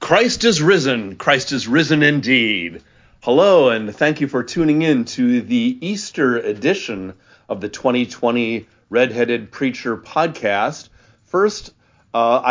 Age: 40-59